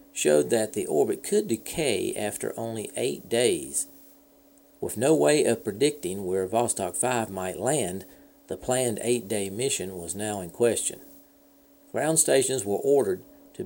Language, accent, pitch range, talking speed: English, American, 105-140 Hz, 145 wpm